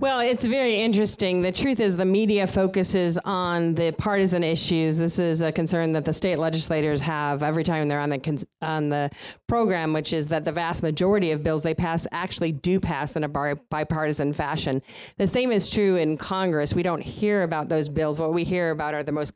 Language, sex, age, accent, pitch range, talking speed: English, female, 40-59, American, 150-185 Hz, 215 wpm